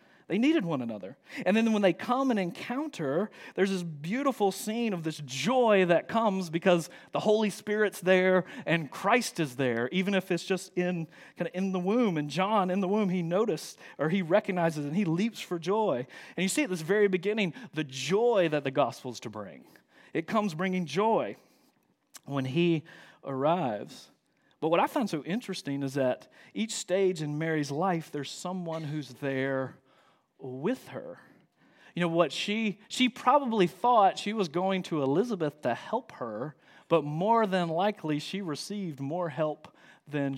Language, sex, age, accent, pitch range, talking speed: English, male, 40-59, American, 145-195 Hz, 175 wpm